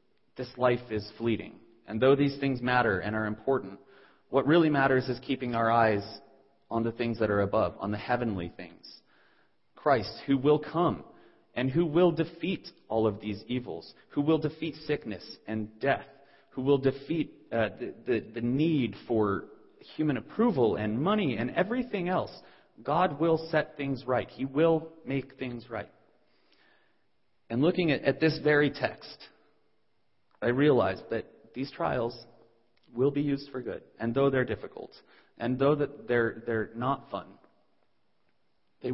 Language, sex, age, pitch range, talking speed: English, male, 30-49, 105-140 Hz, 155 wpm